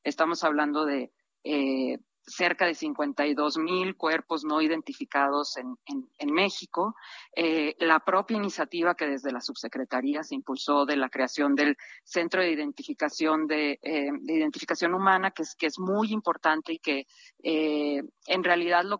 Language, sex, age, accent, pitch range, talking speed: Spanish, female, 40-59, Mexican, 155-205 Hz, 150 wpm